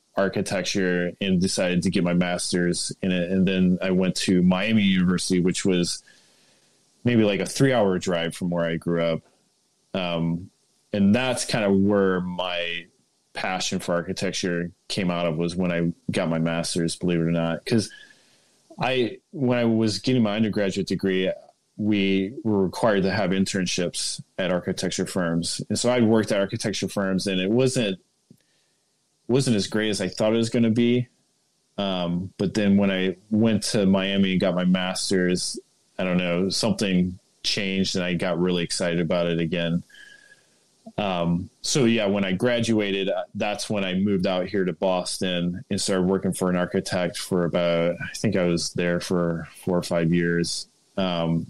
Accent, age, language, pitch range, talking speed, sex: American, 20-39, English, 85-100 Hz, 175 wpm, male